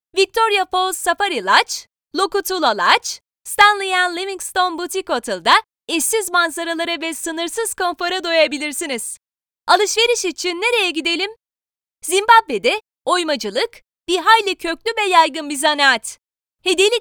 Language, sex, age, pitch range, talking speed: Turkish, female, 30-49, 320-410 Hz, 110 wpm